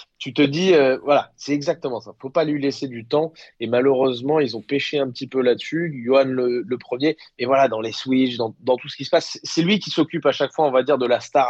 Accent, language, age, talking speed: French, French, 20-39, 280 wpm